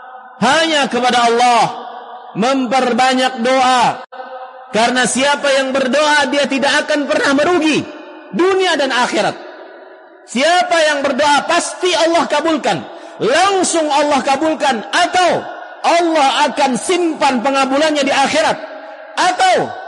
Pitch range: 230-320 Hz